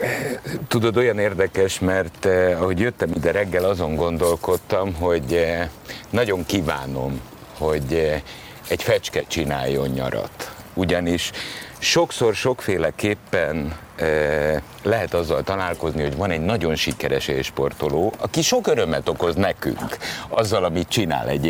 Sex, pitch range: male, 85-135 Hz